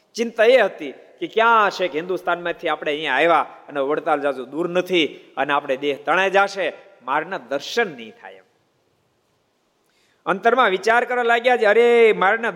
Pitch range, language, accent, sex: 175-230 Hz, Gujarati, native, male